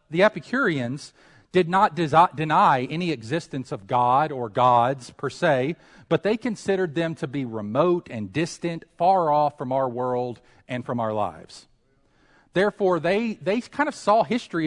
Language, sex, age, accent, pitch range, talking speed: English, male, 40-59, American, 125-165 Hz, 160 wpm